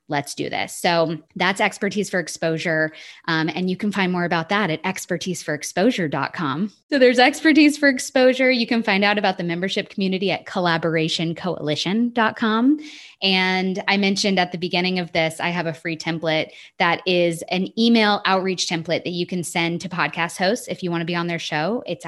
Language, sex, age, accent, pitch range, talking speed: English, female, 20-39, American, 160-205 Hz, 185 wpm